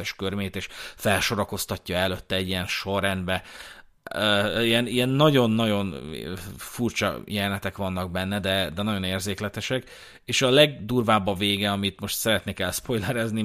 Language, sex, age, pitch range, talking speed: Hungarian, male, 30-49, 95-110 Hz, 120 wpm